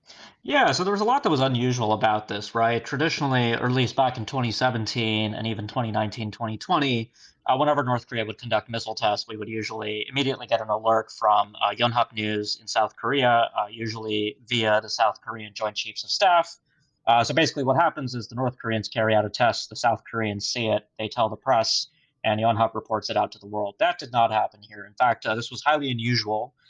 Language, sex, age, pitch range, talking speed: English, male, 30-49, 110-125 Hz, 220 wpm